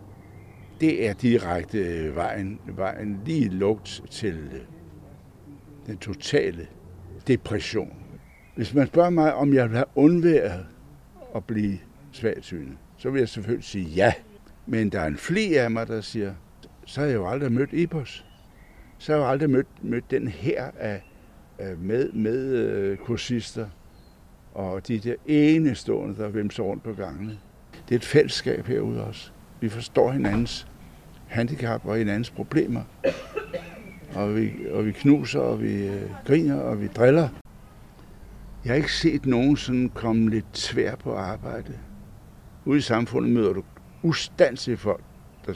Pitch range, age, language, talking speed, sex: 95-125 Hz, 60-79, Danish, 150 wpm, male